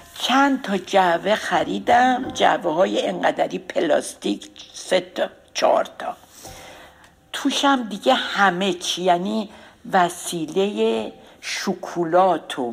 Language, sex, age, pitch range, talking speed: Persian, female, 60-79, 195-270 Hz, 90 wpm